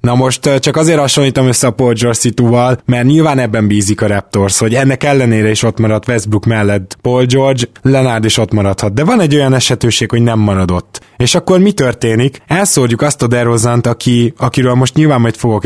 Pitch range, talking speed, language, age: 110-135 Hz, 200 wpm, Hungarian, 20-39